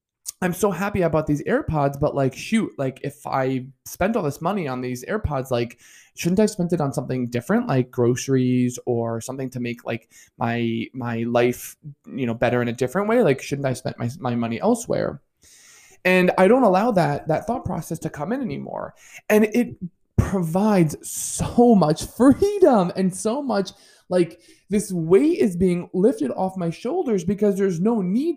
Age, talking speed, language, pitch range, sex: 20-39, 180 wpm, English, 135-195 Hz, male